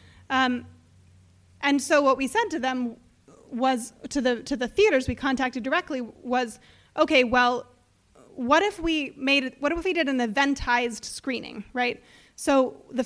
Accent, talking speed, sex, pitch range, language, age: American, 155 wpm, female, 245-305 Hz, English, 20-39